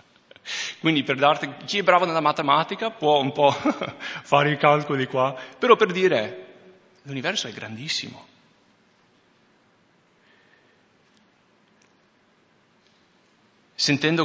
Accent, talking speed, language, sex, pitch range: Italian, 95 wpm, English, male, 130-175 Hz